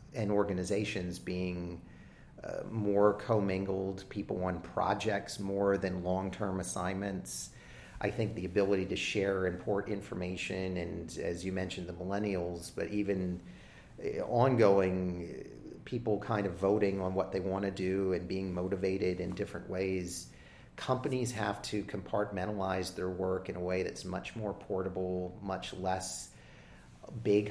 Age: 40-59